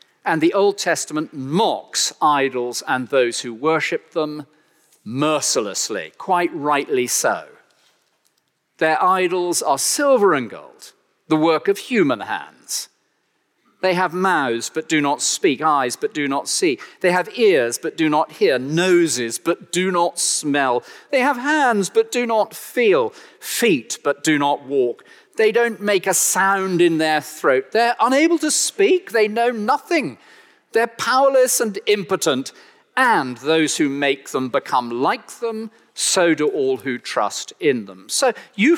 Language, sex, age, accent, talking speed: English, male, 40-59, British, 150 wpm